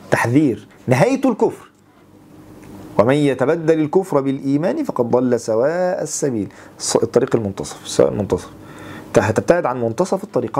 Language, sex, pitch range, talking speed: English, male, 125-175 Hz, 110 wpm